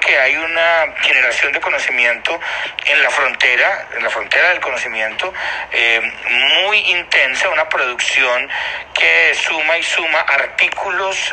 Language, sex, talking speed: Spanish, male, 125 wpm